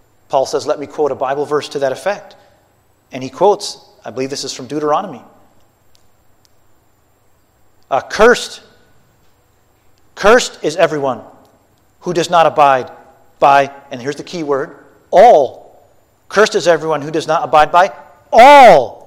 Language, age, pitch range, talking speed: English, 40-59, 115-160 Hz, 140 wpm